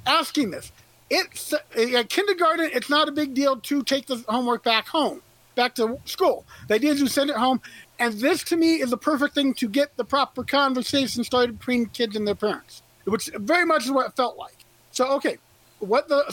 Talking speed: 215 wpm